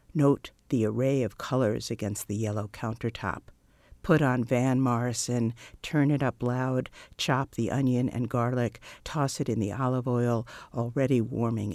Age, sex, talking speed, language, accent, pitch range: 50-69, female, 155 wpm, English, American, 110-135 Hz